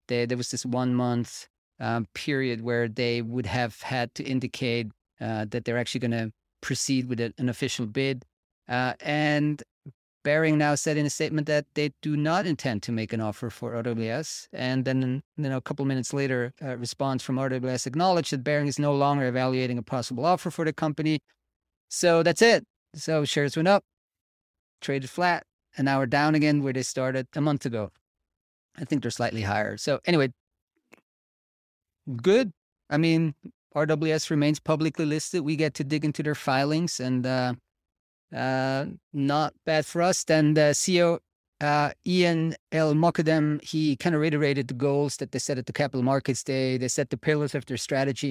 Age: 30-49